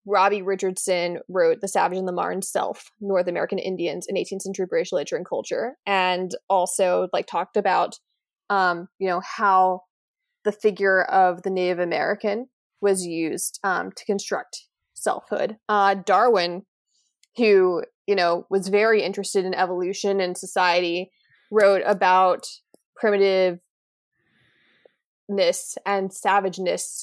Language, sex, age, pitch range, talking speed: English, female, 20-39, 185-210 Hz, 130 wpm